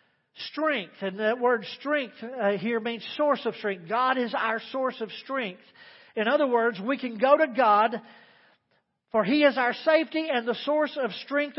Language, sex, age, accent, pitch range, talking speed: English, male, 40-59, American, 220-270 Hz, 180 wpm